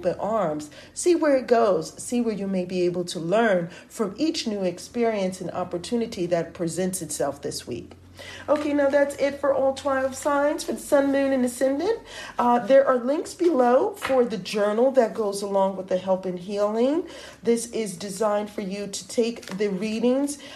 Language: English